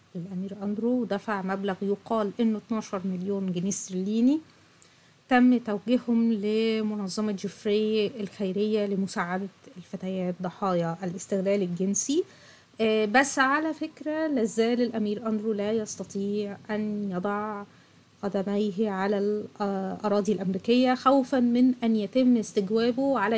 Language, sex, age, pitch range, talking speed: Arabic, female, 30-49, 200-245 Hz, 105 wpm